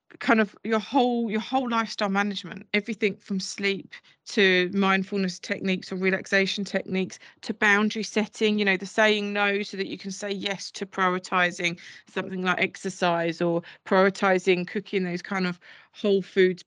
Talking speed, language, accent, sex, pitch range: 160 wpm, English, British, female, 185-210 Hz